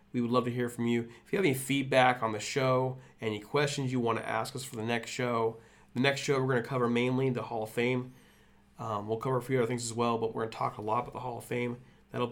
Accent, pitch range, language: American, 110-130 Hz, English